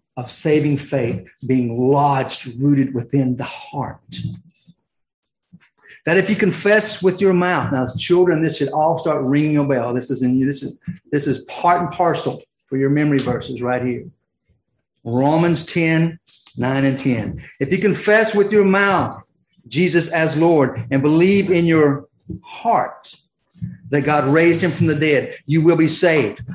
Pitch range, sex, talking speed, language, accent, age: 145-215 Hz, male, 155 wpm, English, American, 50-69